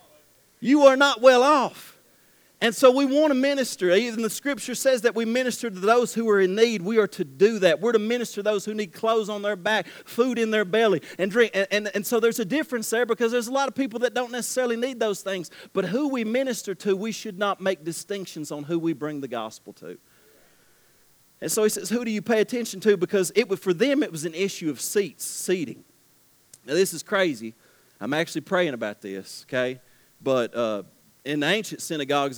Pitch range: 160-235 Hz